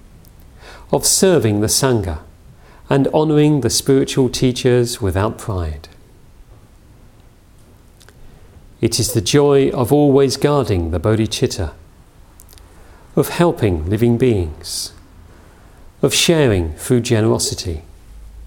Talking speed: 90 wpm